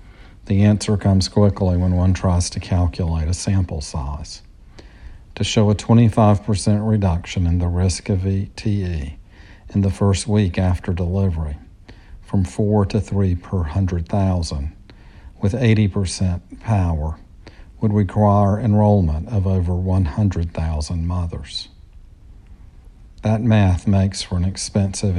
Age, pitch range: 50-69, 85-100 Hz